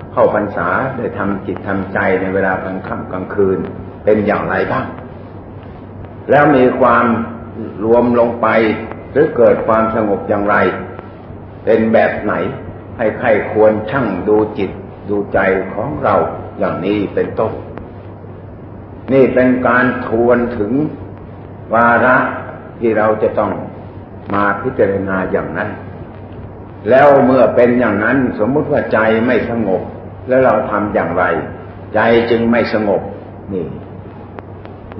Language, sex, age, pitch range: Thai, male, 50-69, 100-115 Hz